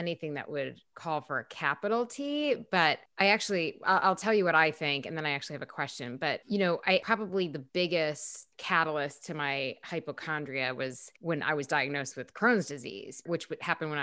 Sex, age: female, 20-39